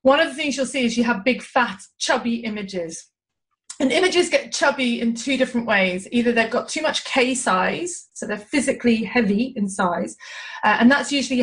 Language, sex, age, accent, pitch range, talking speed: English, female, 30-49, British, 205-270 Hz, 200 wpm